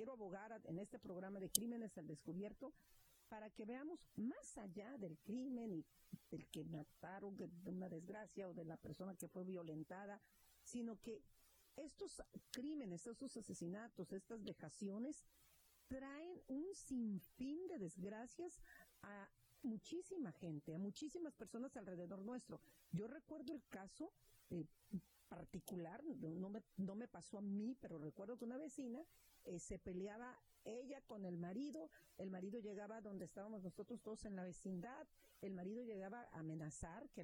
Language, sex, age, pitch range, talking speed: Spanish, female, 50-69, 175-245 Hz, 145 wpm